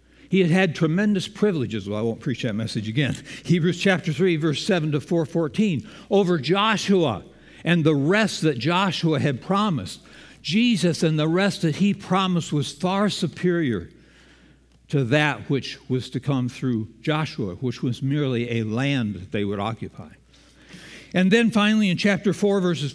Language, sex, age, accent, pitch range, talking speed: English, male, 60-79, American, 135-190 Hz, 165 wpm